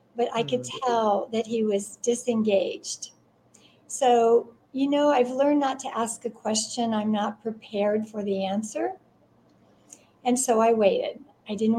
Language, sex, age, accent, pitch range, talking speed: English, female, 60-79, American, 215-255 Hz, 155 wpm